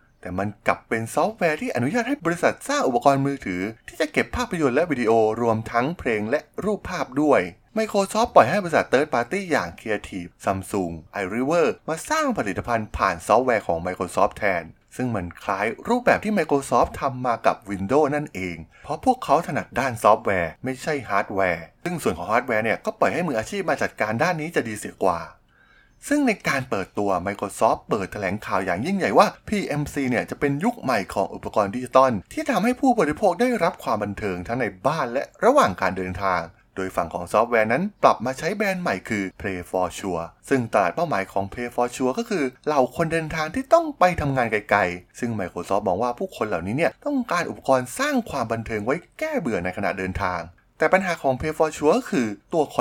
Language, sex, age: Thai, male, 20-39